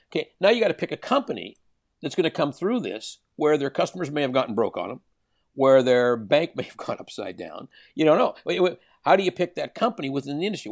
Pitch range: 135-175 Hz